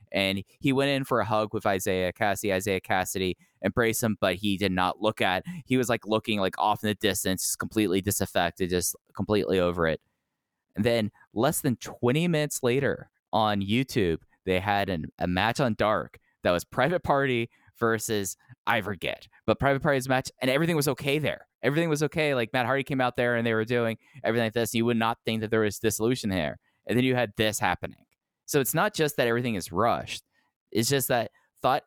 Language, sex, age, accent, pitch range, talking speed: English, male, 20-39, American, 100-125 Hz, 205 wpm